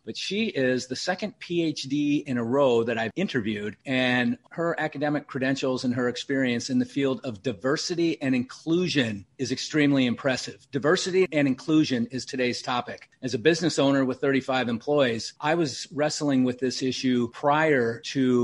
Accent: American